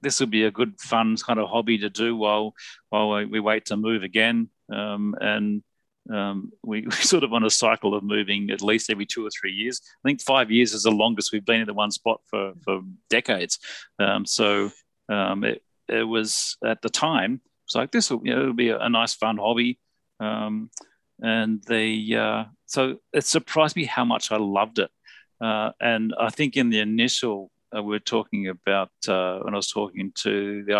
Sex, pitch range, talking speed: male, 105-130 Hz, 205 wpm